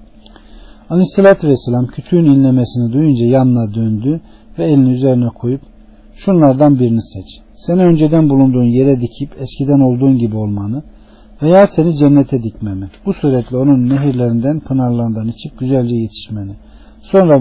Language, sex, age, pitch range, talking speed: Turkish, male, 50-69, 110-140 Hz, 130 wpm